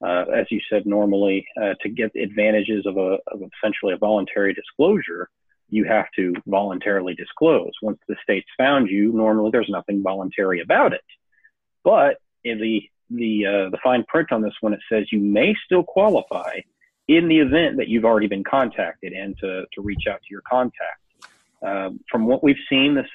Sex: male